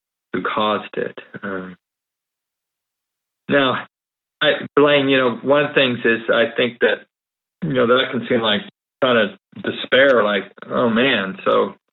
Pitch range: 110-135 Hz